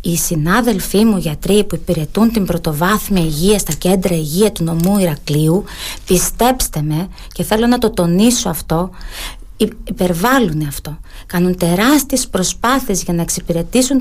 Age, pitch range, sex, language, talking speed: 30-49, 175-240 Hz, female, Greek, 135 wpm